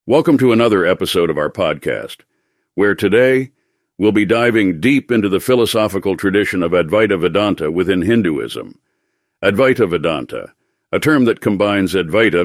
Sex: male